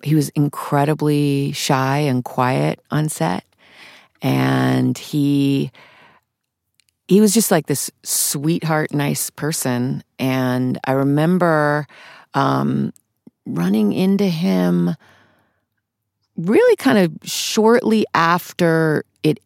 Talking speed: 95 wpm